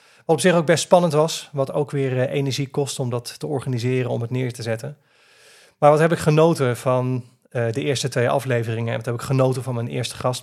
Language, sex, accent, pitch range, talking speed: Dutch, male, Dutch, 120-140 Hz, 230 wpm